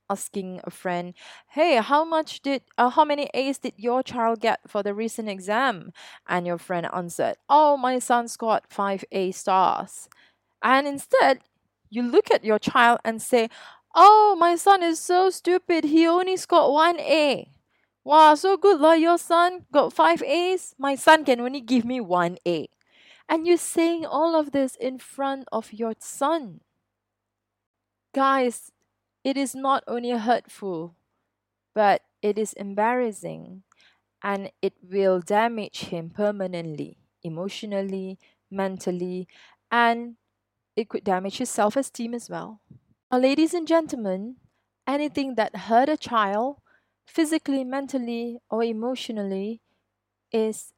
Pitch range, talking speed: 190-285 Hz, 140 wpm